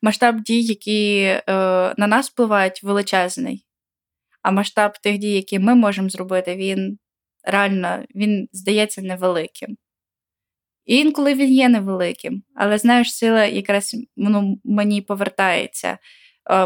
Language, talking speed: Ukrainian, 125 wpm